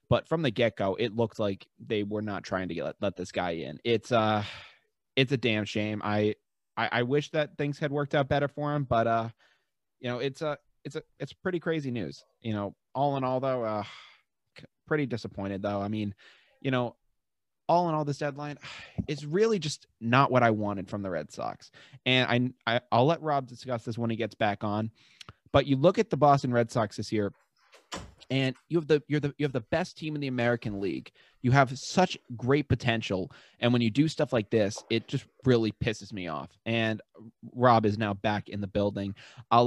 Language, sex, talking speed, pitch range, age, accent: English, male, 220 wpm, 110-140 Hz, 20-39, American